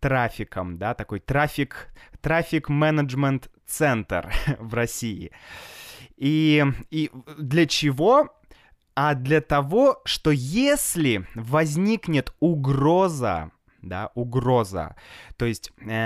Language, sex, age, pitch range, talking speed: Russian, male, 20-39, 125-170 Hz, 80 wpm